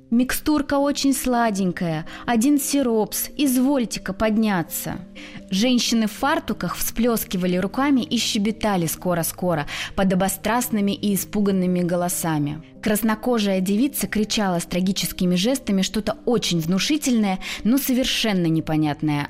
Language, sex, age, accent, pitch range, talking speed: Russian, female, 20-39, native, 175-245 Hz, 100 wpm